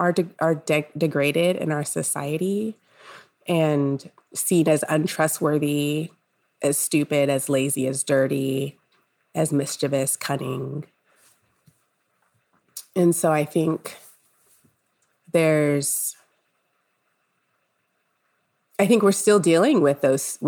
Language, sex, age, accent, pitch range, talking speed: English, female, 30-49, American, 140-175 Hz, 95 wpm